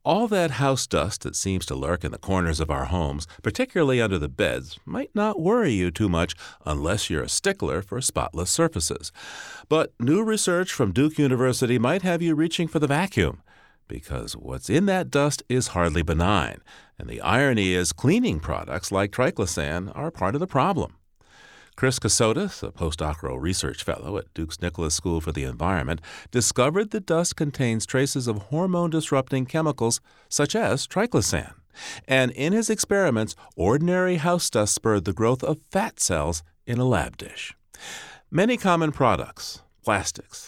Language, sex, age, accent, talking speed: English, male, 40-59, American, 165 wpm